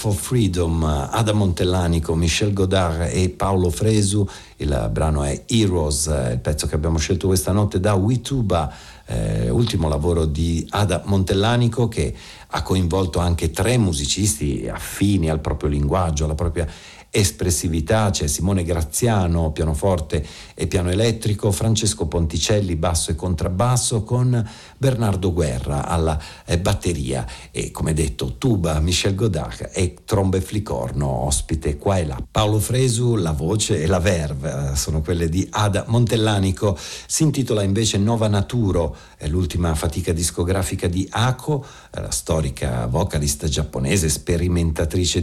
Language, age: Italian, 50-69